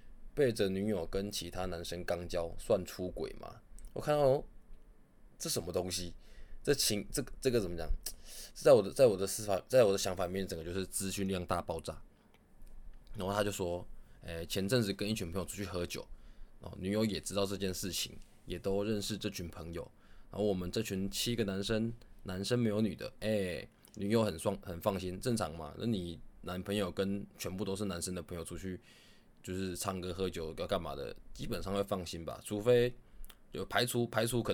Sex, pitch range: male, 90-105 Hz